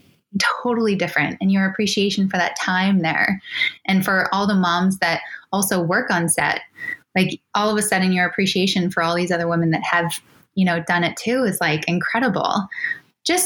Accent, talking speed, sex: American, 185 wpm, female